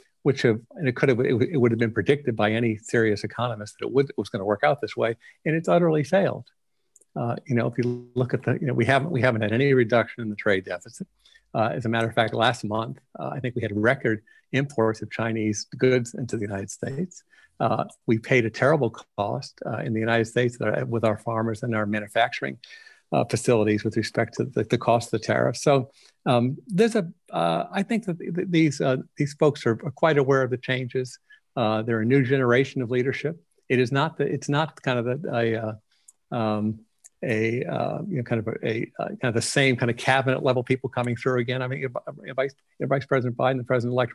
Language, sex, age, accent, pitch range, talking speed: English, male, 50-69, American, 115-140 Hz, 230 wpm